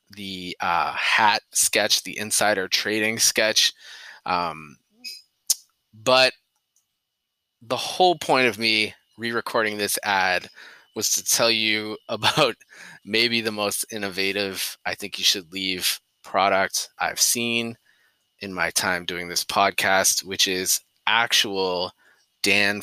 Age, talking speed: 20-39, 120 wpm